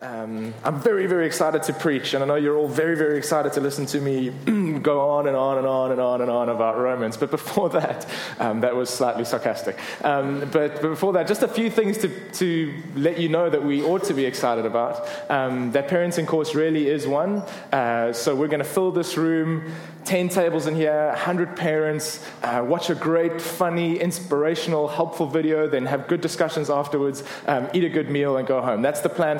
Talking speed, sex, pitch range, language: 215 wpm, male, 135-165 Hz, English